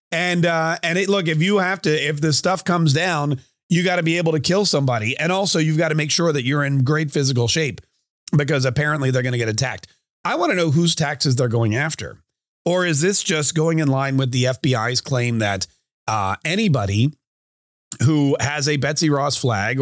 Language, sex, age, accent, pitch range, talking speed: English, male, 40-59, American, 130-165 Hz, 215 wpm